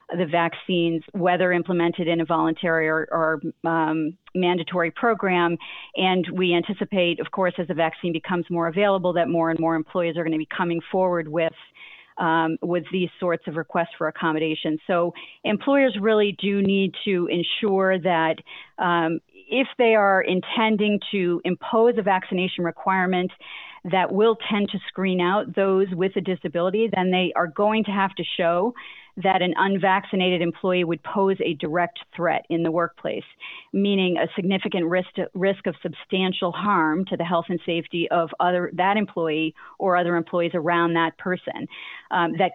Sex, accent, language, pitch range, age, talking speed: female, American, English, 170-195 Hz, 40-59, 165 wpm